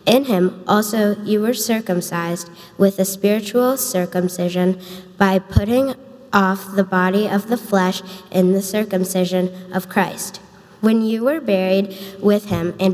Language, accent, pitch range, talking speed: English, American, 180-205 Hz, 140 wpm